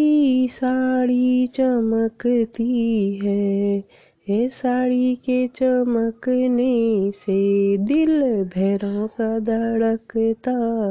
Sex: female